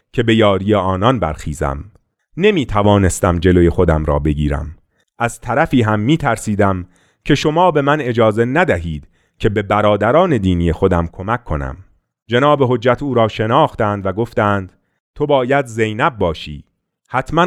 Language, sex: Persian, male